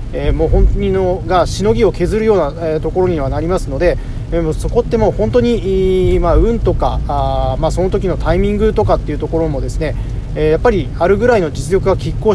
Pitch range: 135-175 Hz